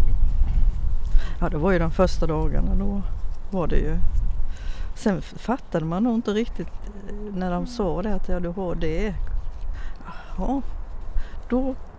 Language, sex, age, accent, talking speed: Swedish, female, 60-79, native, 135 wpm